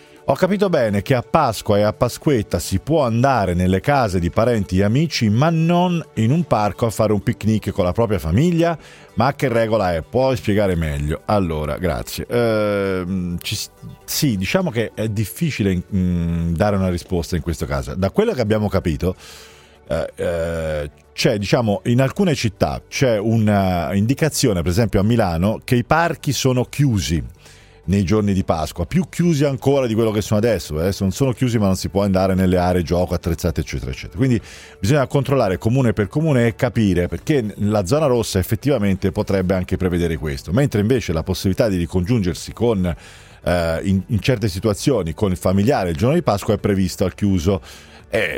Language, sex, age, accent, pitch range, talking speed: Italian, male, 40-59, native, 90-120 Hz, 180 wpm